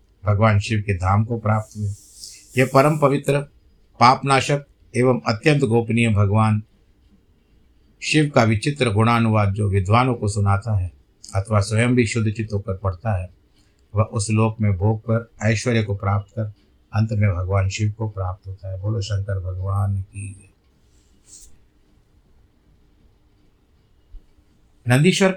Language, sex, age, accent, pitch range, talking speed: Hindi, male, 50-69, native, 100-125 Hz, 130 wpm